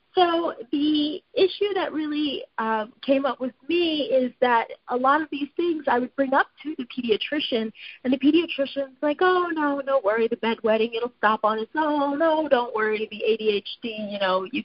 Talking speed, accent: 195 wpm, American